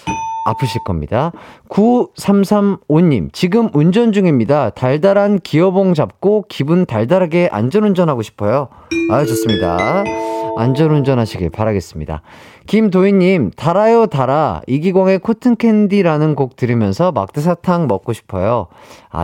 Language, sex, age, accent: Korean, male, 30-49, native